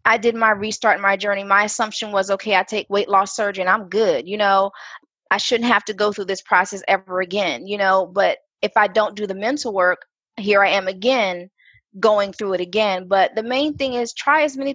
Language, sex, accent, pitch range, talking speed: English, female, American, 195-230 Hz, 230 wpm